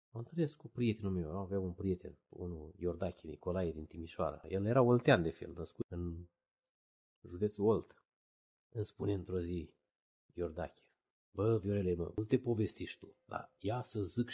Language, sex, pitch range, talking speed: Romanian, male, 95-150 Hz, 155 wpm